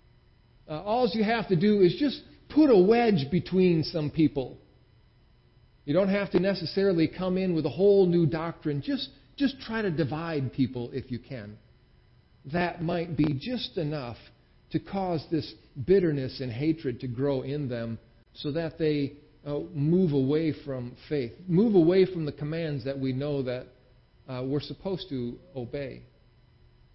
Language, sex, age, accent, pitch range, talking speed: English, male, 50-69, American, 125-180 Hz, 160 wpm